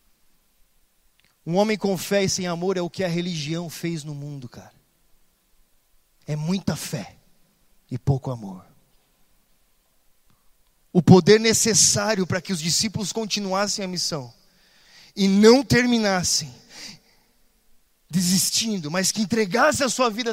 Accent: Brazilian